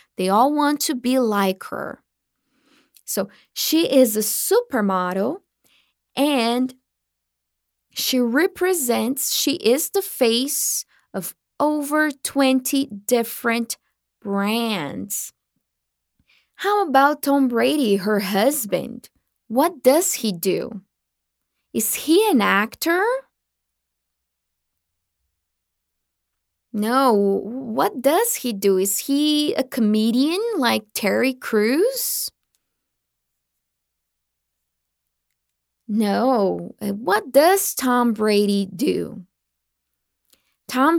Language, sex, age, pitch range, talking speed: English, female, 20-39, 190-280 Hz, 85 wpm